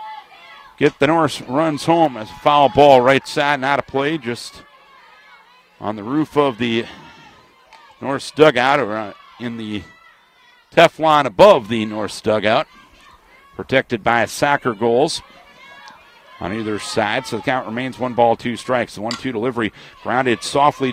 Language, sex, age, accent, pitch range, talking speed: English, male, 50-69, American, 125-165 Hz, 145 wpm